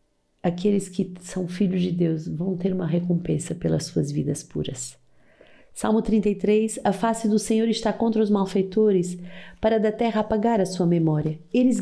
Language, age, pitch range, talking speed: Portuguese, 40-59, 170-215 Hz, 160 wpm